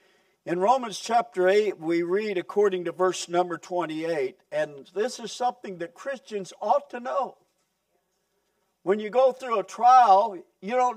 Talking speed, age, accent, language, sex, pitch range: 155 wpm, 60-79, American, English, male, 185-220 Hz